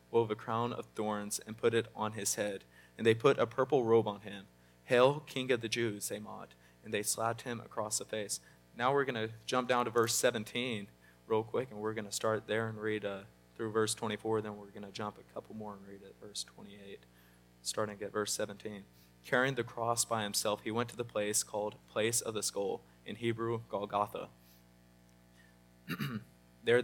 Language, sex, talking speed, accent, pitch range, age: English, male, 205 wpm, American, 100-115 Hz, 20-39